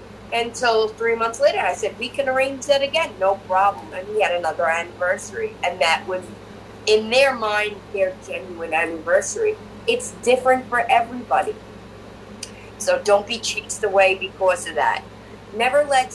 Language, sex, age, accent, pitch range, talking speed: English, female, 20-39, American, 185-240 Hz, 150 wpm